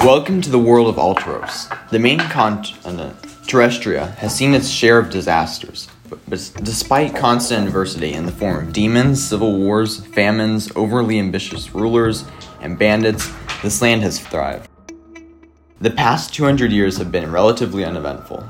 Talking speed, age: 145 wpm, 20-39